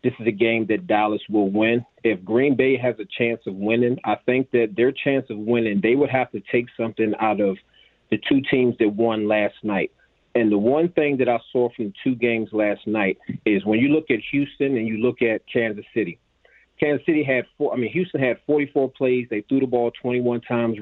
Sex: male